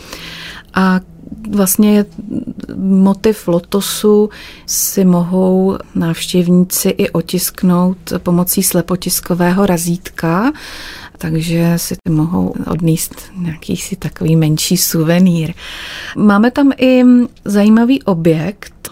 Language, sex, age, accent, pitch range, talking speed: Czech, female, 30-49, native, 170-195 Hz, 85 wpm